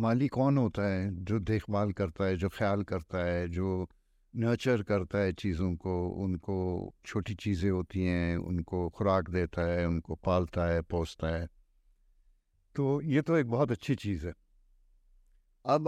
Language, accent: English, Indian